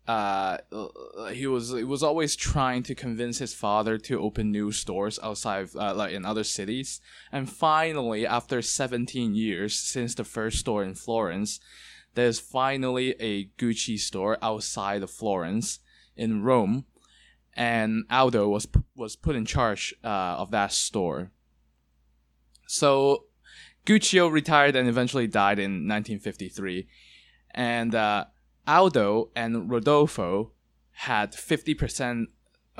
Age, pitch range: 20-39, 105-130 Hz